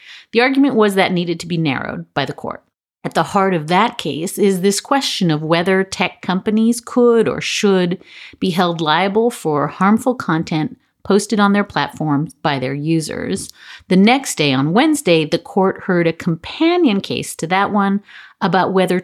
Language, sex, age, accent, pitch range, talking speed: English, female, 50-69, American, 165-225 Hz, 175 wpm